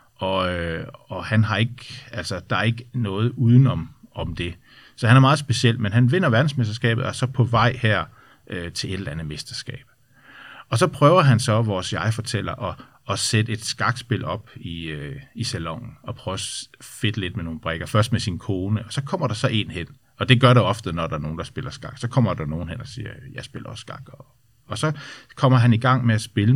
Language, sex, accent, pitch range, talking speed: Danish, male, native, 110-130 Hz, 235 wpm